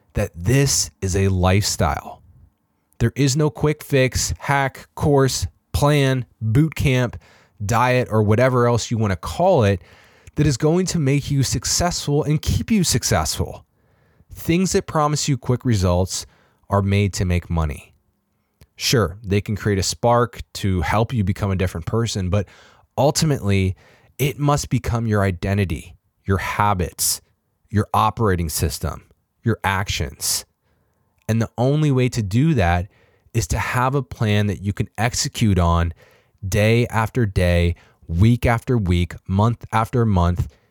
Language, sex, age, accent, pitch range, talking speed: English, male, 20-39, American, 95-130 Hz, 145 wpm